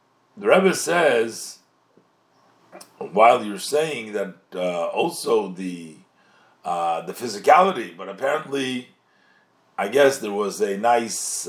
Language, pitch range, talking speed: English, 125-205 Hz, 110 wpm